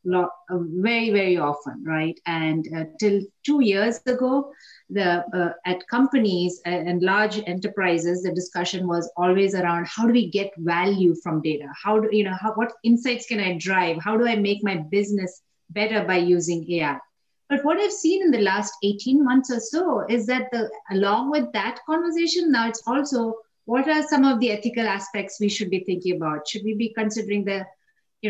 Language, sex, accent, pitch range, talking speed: English, female, Indian, 180-240 Hz, 185 wpm